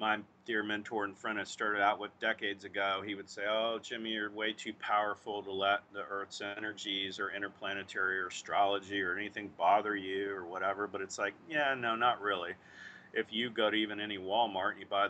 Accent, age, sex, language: American, 40-59, male, English